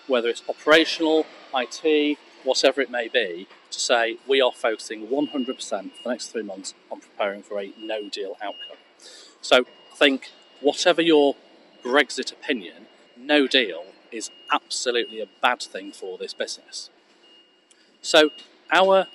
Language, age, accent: English, 40-59, British